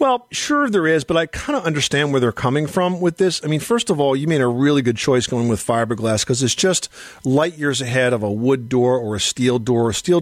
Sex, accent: male, American